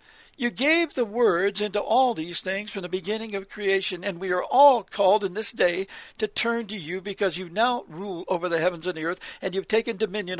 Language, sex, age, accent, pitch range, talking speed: English, male, 60-79, American, 190-235 Hz, 225 wpm